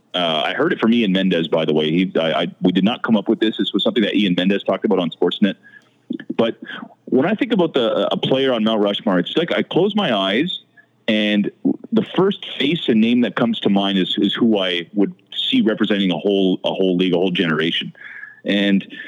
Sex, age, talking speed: male, 30-49, 230 wpm